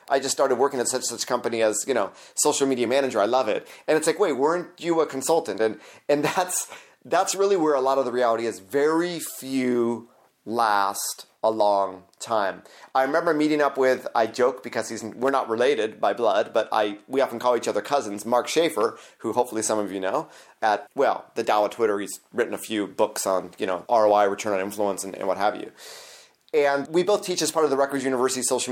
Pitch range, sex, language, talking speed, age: 115-160 Hz, male, English, 220 wpm, 30-49